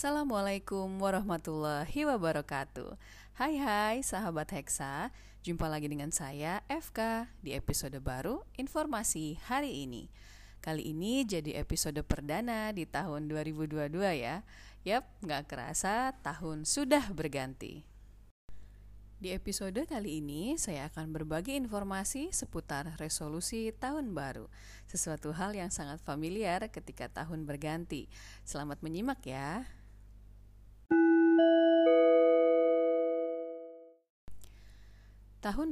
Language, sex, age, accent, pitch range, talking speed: Indonesian, female, 30-49, native, 145-195 Hz, 95 wpm